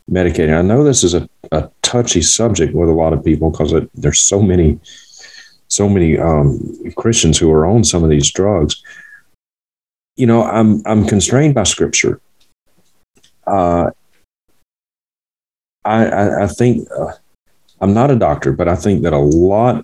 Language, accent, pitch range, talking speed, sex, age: English, American, 75-100 Hz, 155 wpm, male, 40-59